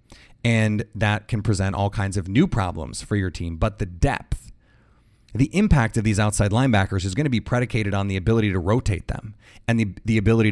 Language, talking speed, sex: English, 205 wpm, male